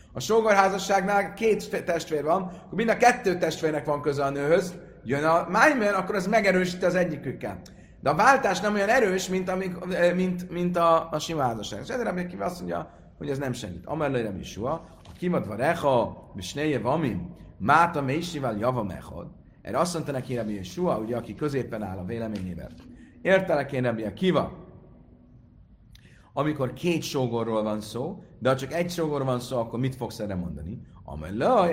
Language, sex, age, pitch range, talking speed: Hungarian, male, 40-59, 125-180 Hz, 170 wpm